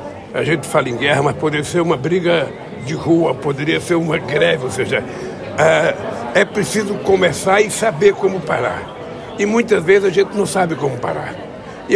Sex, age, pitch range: male, 60-79, 145-195 Hz